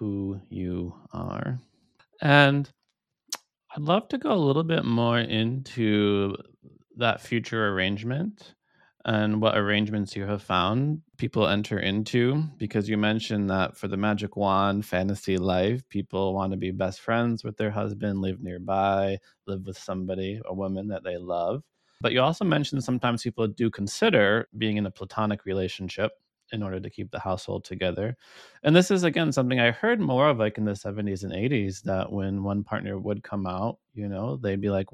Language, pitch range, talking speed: English, 95-115 Hz, 175 wpm